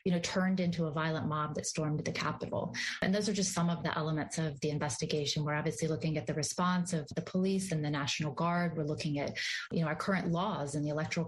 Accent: American